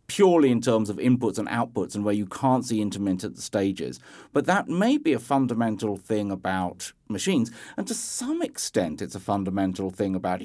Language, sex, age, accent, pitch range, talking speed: English, male, 50-69, British, 110-160 Hz, 185 wpm